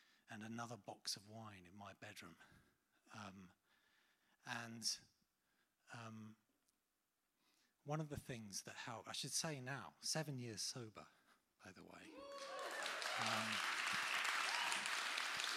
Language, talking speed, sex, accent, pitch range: English, 110 wpm, male, British, 110-145 Hz